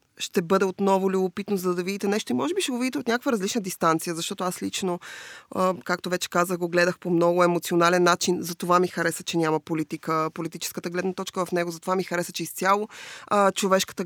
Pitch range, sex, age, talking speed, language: 175-195 Hz, female, 20-39, 205 wpm, Bulgarian